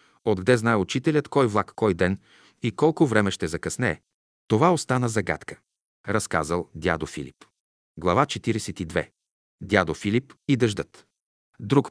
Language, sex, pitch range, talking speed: Bulgarian, male, 90-120 Hz, 125 wpm